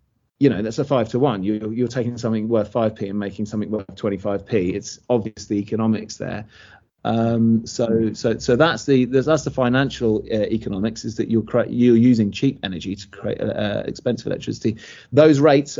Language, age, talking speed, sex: English, 30-49, 195 wpm, male